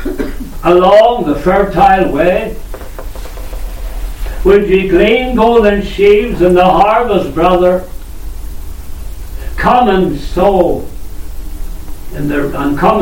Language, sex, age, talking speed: English, male, 60-79, 95 wpm